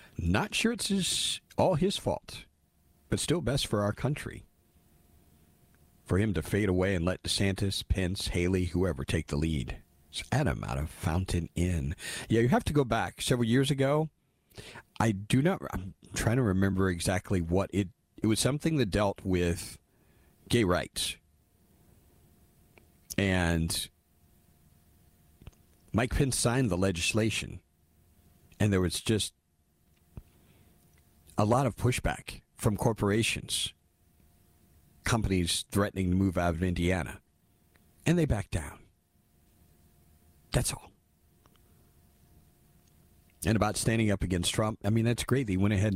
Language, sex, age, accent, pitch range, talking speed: English, male, 40-59, American, 85-110 Hz, 130 wpm